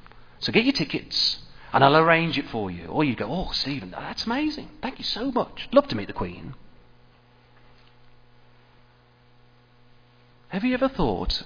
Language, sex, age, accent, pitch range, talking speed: English, male, 40-59, British, 90-135 Hz, 155 wpm